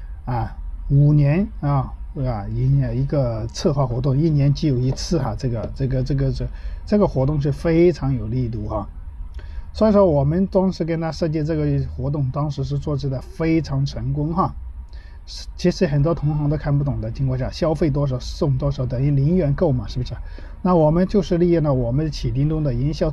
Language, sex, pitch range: Chinese, male, 130-165 Hz